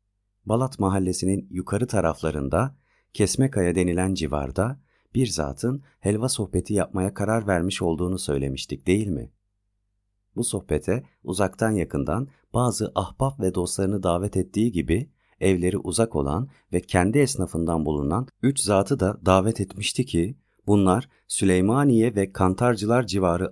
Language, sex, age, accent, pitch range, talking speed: Turkish, male, 40-59, native, 85-105 Hz, 120 wpm